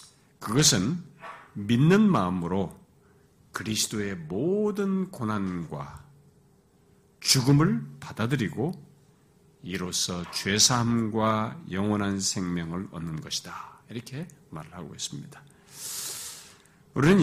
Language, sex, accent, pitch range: Korean, male, native, 100-160 Hz